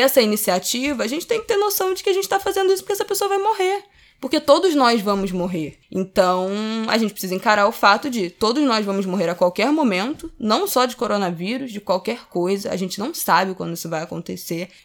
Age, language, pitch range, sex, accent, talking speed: 20-39, Portuguese, 180-225 Hz, female, Brazilian, 220 wpm